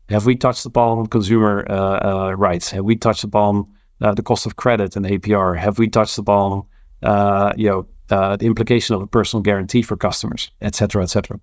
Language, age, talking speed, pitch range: English, 40-59, 195 wpm, 100-115 Hz